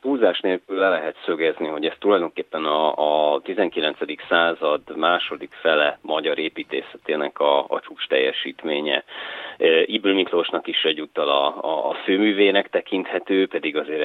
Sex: male